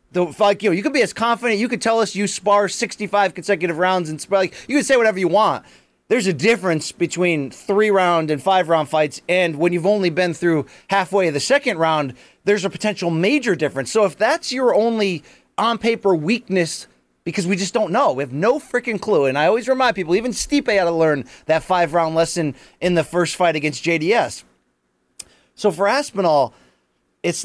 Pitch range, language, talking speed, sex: 160-205 Hz, English, 195 wpm, male